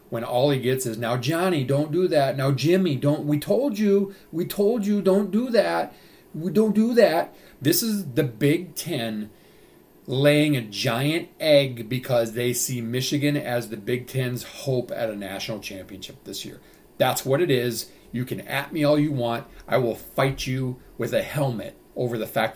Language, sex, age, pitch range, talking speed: English, male, 40-59, 115-155 Hz, 185 wpm